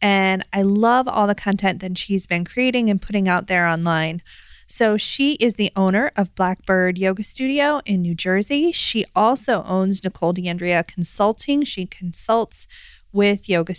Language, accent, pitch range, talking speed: English, American, 185-235 Hz, 160 wpm